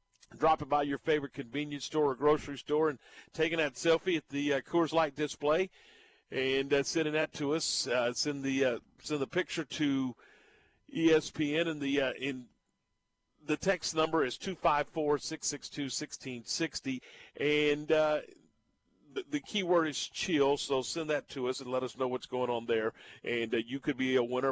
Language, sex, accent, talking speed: English, male, American, 190 wpm